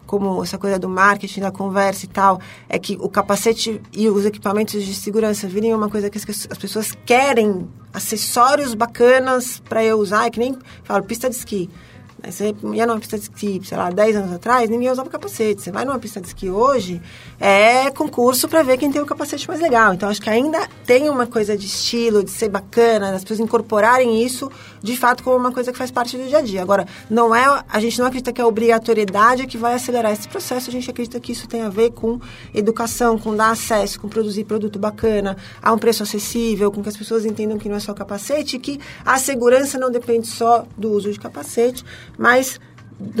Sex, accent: female, Brazilian